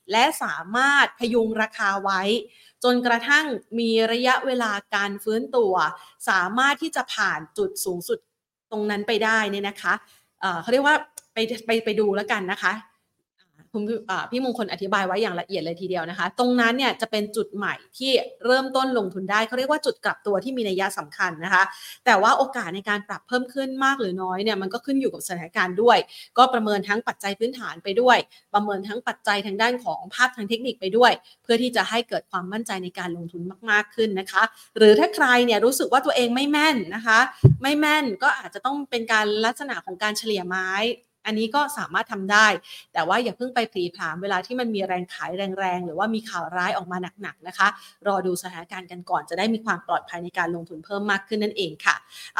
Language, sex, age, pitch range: Thai, female, 30-49, 195-250 Hz